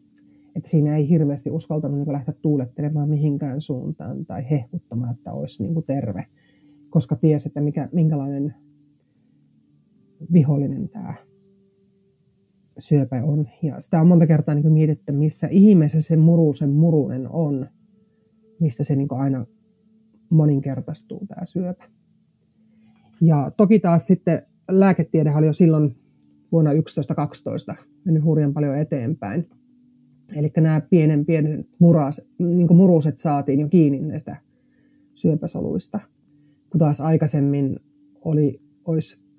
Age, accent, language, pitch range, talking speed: 30-49, native, Finnish, 145-180 Hz, 115 wpm